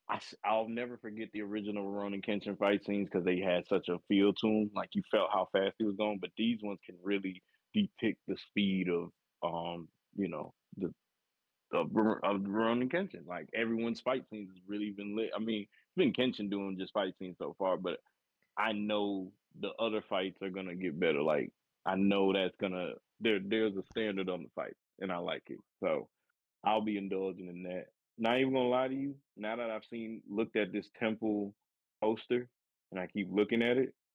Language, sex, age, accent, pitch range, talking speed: English, male, 20-39, American, 95-110 Hz, 210 wpm